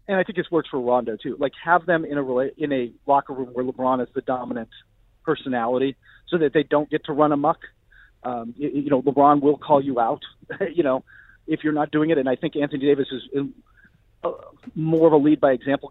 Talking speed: 215 wpm